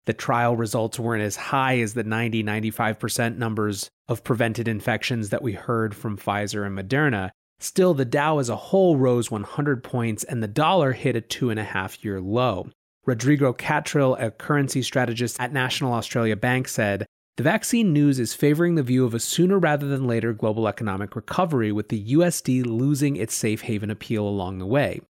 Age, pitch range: 30-49, 110-145 Hz